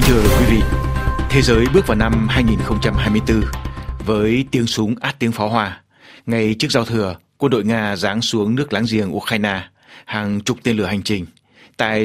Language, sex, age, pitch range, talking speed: Vietnamese, male, 60-79, 100-120 Hz, 180 wpm